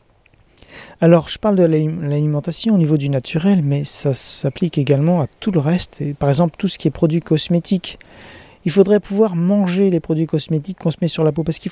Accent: French